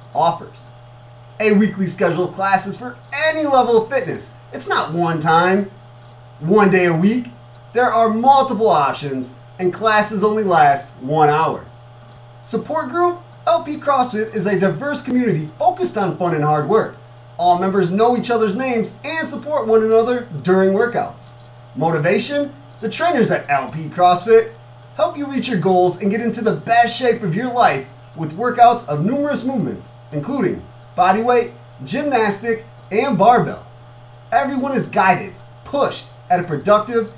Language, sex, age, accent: English, male, 30-49, American